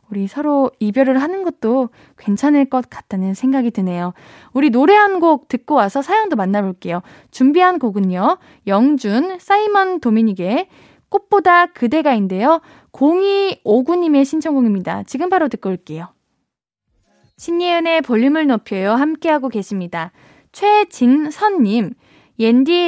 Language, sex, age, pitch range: Korean, female, 20-39, 215-315 Hz